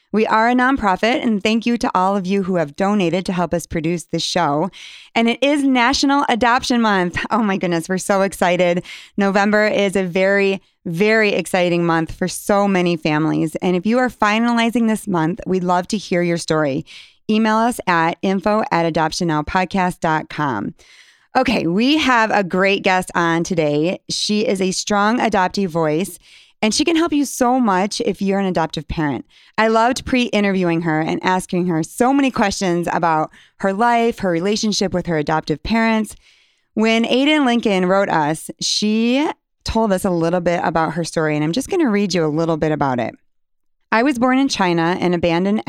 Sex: female